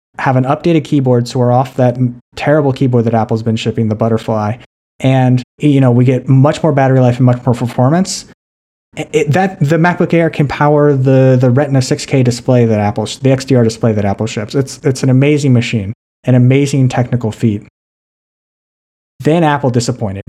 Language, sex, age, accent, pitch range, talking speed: English, male, 30-49, American, 110-135 Hz, 185 wpm